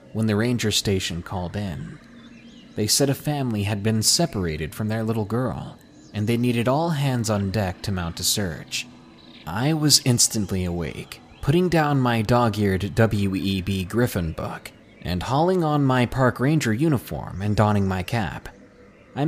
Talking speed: 160 wpm